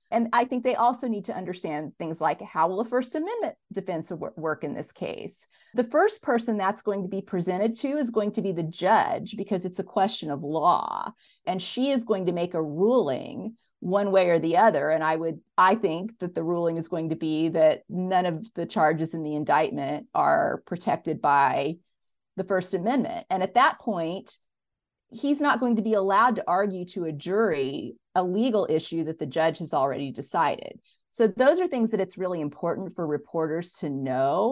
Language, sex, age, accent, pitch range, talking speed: English, female, 40-59, American, 160-215 Hz, 200 wpm